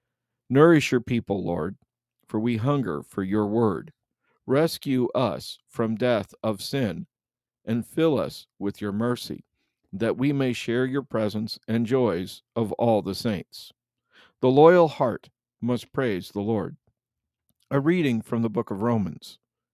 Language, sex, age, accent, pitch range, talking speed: English, male, 50-69, American, 105-125 Hz, 145 wpm